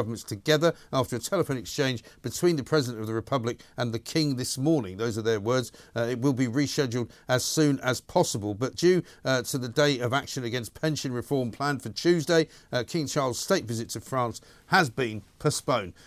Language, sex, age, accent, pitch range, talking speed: English, male, 50-69, British, 115-140 Hz, 200 wpm